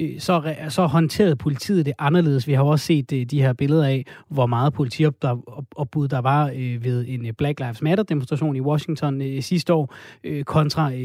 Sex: male